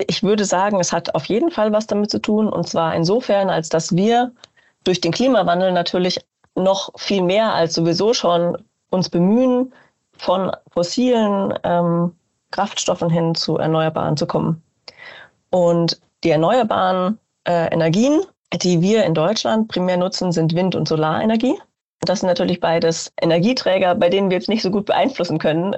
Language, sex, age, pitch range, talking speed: German, female, 30-49, 165-205 Hz, 160 wpm